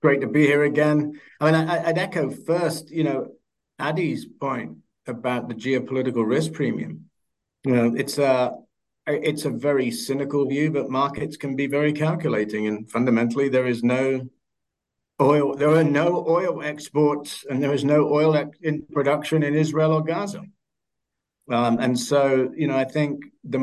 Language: English